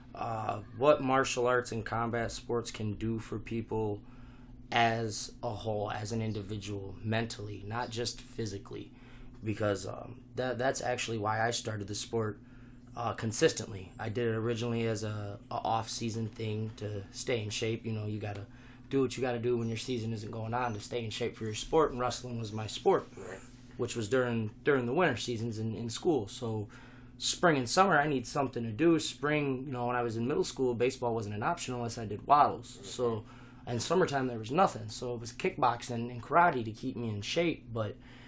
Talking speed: 195 wpm